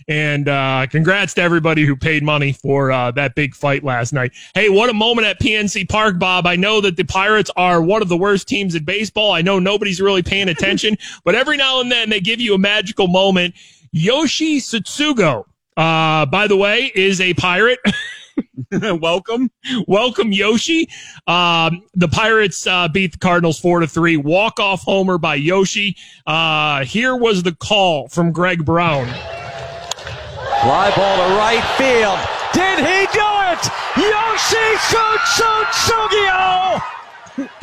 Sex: male